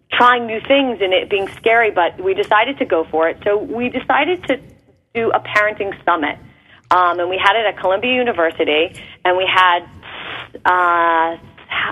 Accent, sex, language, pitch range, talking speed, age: American, female, English, 170-230 Hz, 170 wpm, 30-49